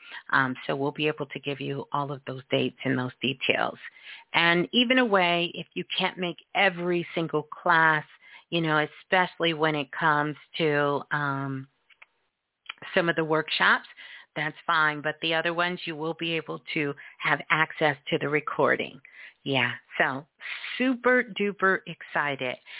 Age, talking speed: 40-59, 155 wpm